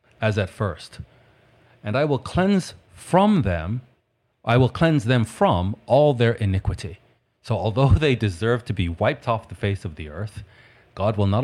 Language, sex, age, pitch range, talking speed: English, male, 40-59, 100-130 Hz, 175 wpm